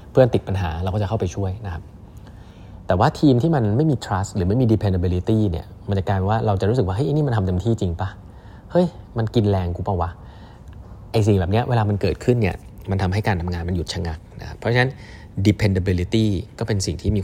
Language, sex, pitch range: Thai, male, 90-110 Hz